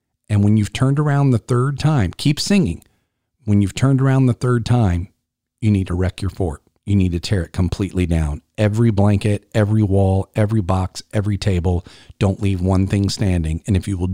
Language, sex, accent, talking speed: English, male, American, 200 wpm